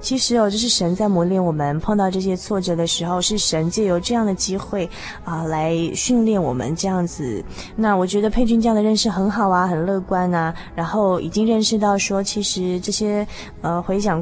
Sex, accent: female, native